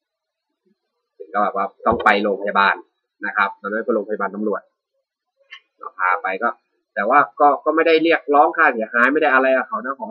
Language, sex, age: Thai, male, 30-49